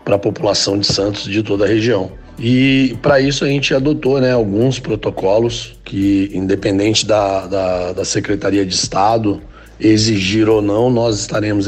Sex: male